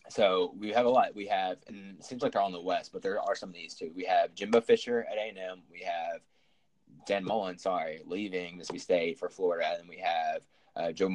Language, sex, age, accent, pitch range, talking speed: English, male, 20-39, American, 90-130 Hz, 230 wpm